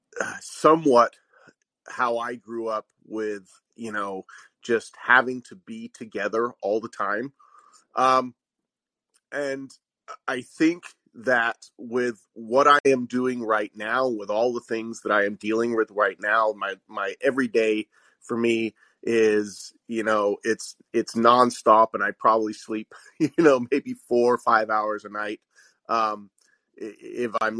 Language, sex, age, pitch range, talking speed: English, male, 30-49, 110-140 Hz, 145 wpm